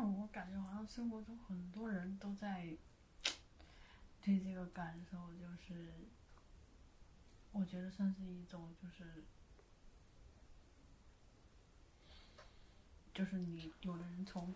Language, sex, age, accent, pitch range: Chinese, female, 20-39, native, 170-195 Hz